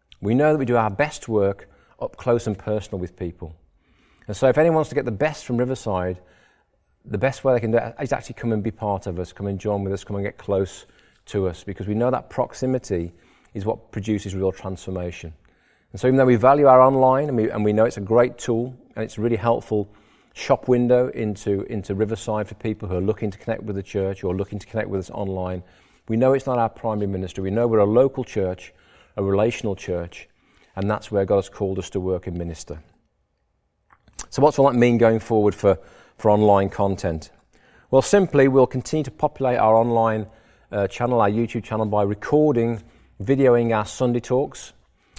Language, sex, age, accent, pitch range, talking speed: English, male, 40-59, British, 100-125 Hz, 215 wpm